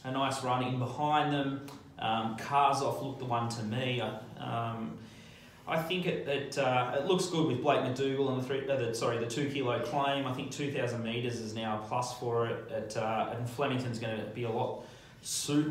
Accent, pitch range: Australian, 120-140 Hz